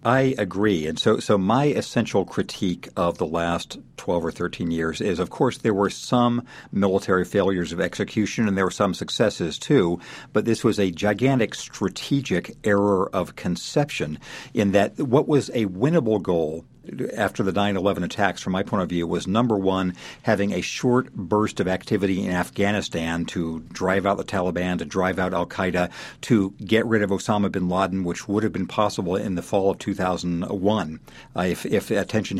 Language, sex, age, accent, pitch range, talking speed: English, male, 50-69, American, 90-110 Hz, 180 wpm